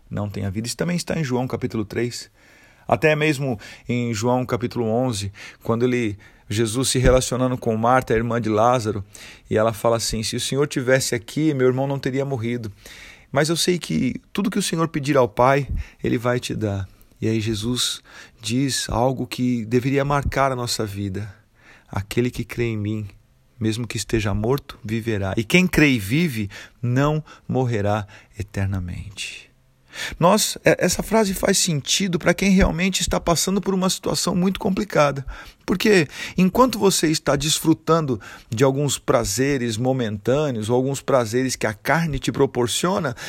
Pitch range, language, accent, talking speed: 115-165 Hz, Portuguese, Brazilian, 160 wpm